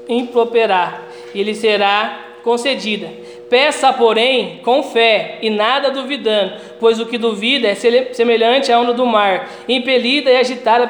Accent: Brazilian